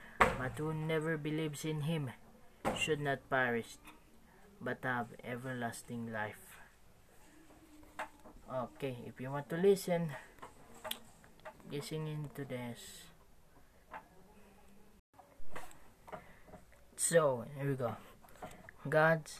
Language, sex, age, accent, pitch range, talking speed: Filipino, female, 20-39, native, 130-155 Hz, 85 wpm